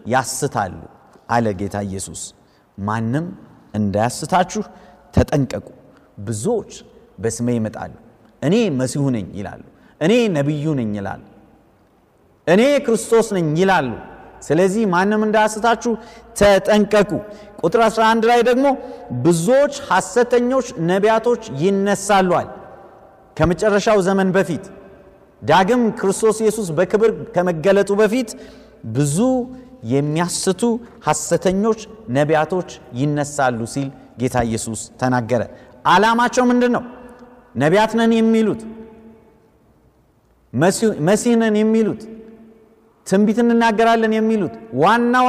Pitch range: 145-225 Hz